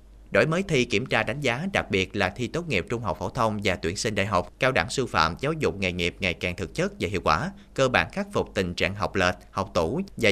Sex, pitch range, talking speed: male, 95-140 Hz, 280 wpm